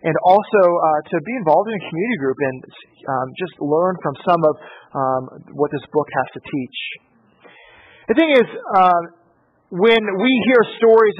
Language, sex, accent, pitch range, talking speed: English, male, American, 150-200 Hz, 170 wpm